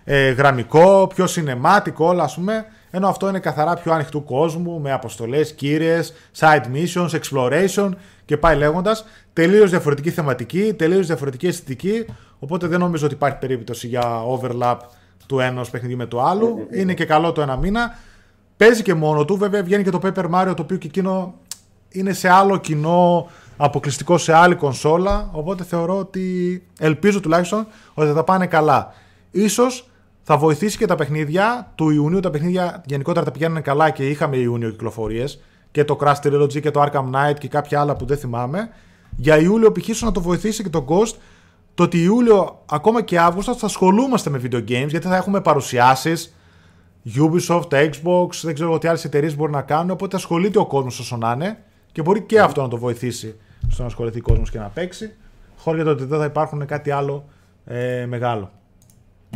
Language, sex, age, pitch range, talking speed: Greek, male, 20-39, 130-185 Hz, 180 wpm